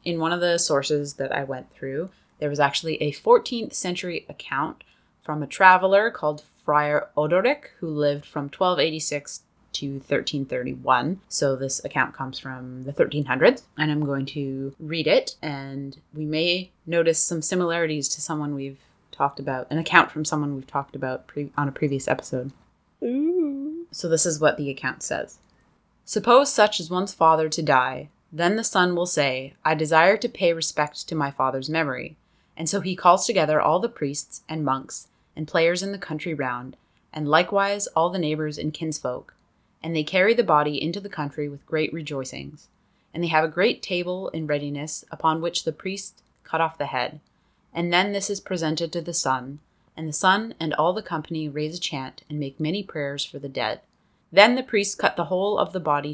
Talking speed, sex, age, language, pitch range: 185 wpm, female, 20-39, English, 140-175 Hz